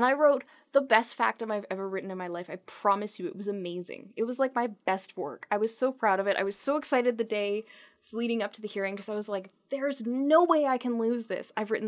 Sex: female